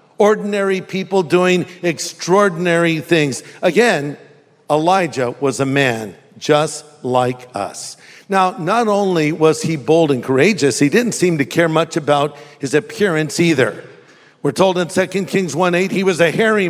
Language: English